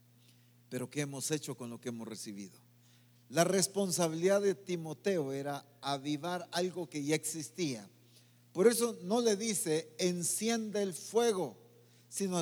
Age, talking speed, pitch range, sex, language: 50-69, 135 wpm, 120-200 Hz, male, English